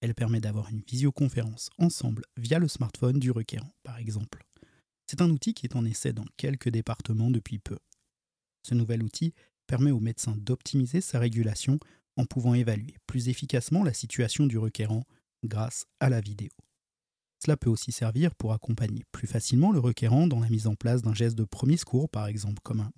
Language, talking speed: French, 185 wpm